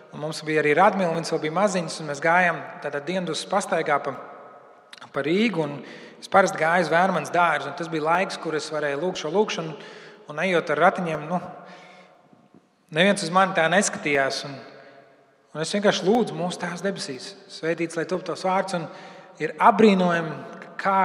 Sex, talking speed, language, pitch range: male, 165 wpm, English, 155-195 Hz